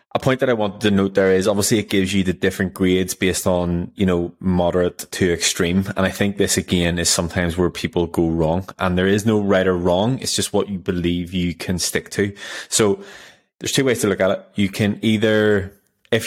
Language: English